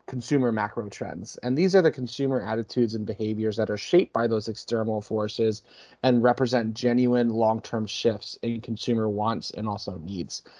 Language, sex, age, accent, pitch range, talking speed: English, male, 30-49, American, 110-130 Hz, 165 wpm